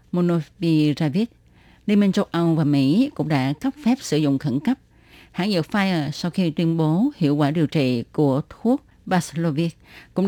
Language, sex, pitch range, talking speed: Vietnamese, female, 150-200 Hz, 175 wpm